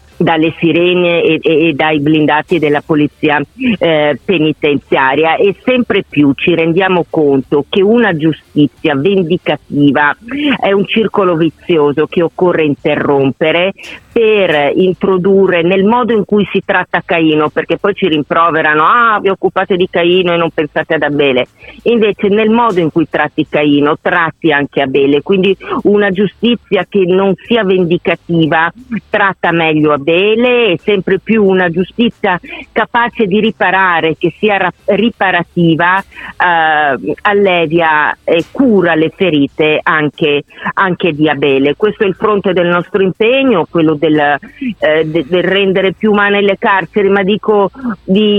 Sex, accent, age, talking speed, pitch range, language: female, native, 40-59, 140 wpm, 155-200 Hz, Italian